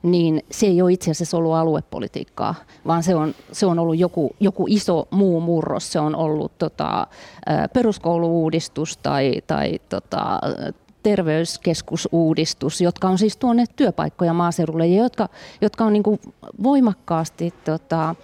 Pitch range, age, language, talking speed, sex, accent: 160-195 Hz, 30-49, Finnish, 120 wpm, female, native